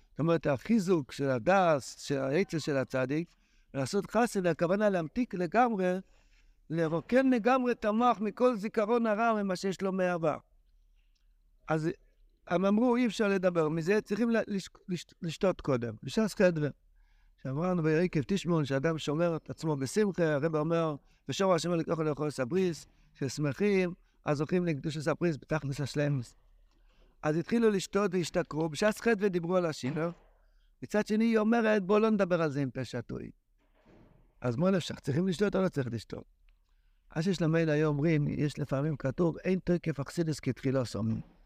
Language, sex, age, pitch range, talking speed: Hebrew, male, 60-79, 145-205 Hz, 150 wpm